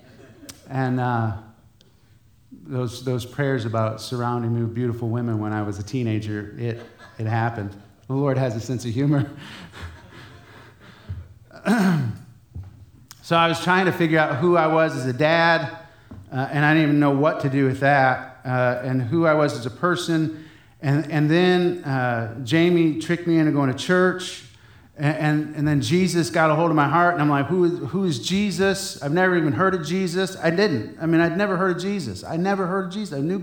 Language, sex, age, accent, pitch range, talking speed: English, male, 30-49, American, 115-165 Hz, 195 wpm